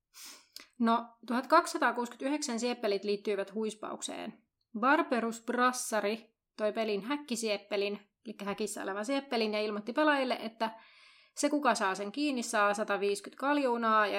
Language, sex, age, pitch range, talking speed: Finnish, female, 20-39, 205-250 Hz, 115 wpm